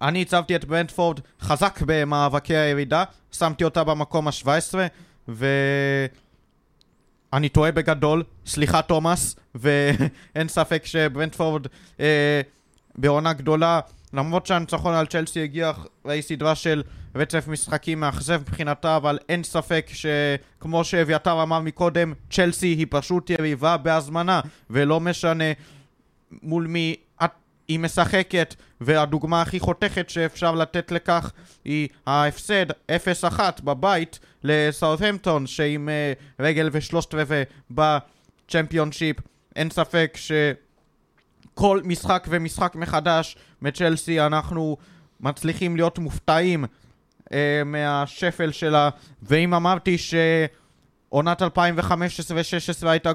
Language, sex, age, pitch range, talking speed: Hebrew, male, 20-39, 145-170 Hz, 100 wpm